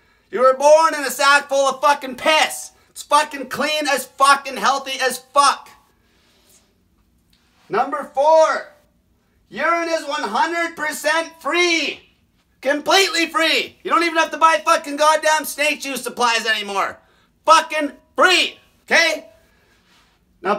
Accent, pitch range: American, 260-300 Hz